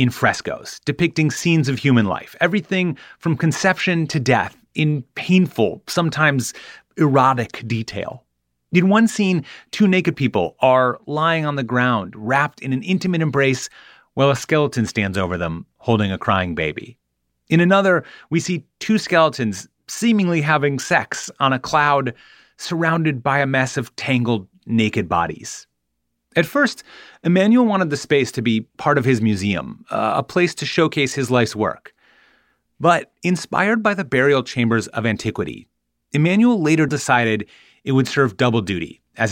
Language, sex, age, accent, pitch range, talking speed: English, male, 30-49, American, 115-170 Hz, 150 wpm